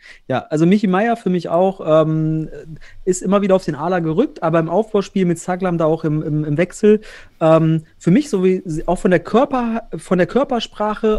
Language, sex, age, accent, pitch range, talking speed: German, male, 30-49, German, 150-200 Hz, 205 wpm